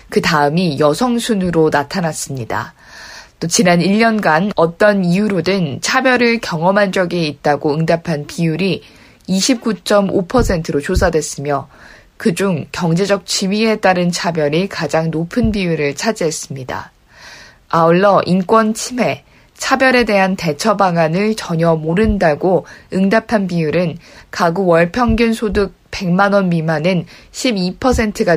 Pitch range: 165-215 Hz